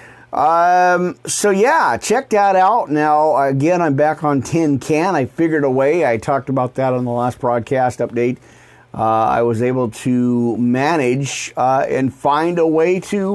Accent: American